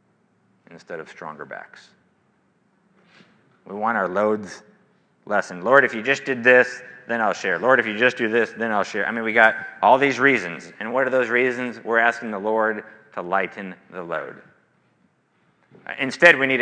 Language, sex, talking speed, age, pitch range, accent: English, male, 180 wpm, 30-49, 100-130 Hz, American